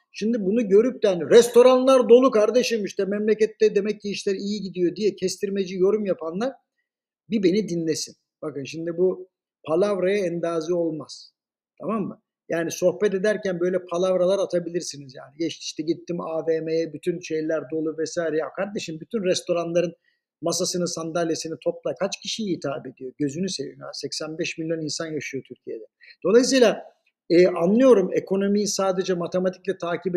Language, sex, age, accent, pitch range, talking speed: Turkish, male, 50-69, native, 170-215 Hz, 135 wpm